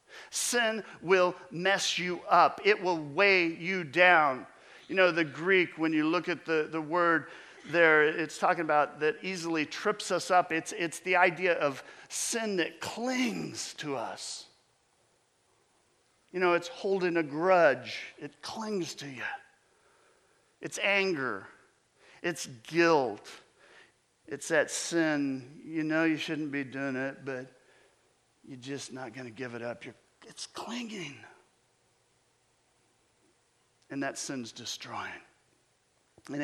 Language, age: English, 50-69